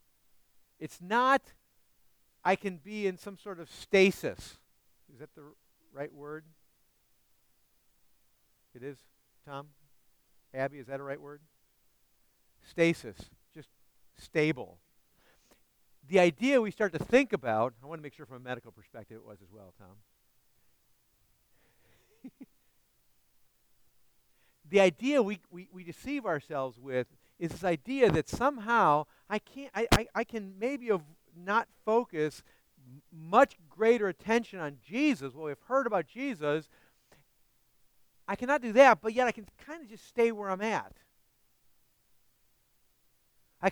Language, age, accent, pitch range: English, 50-69, American, 145-230 Hz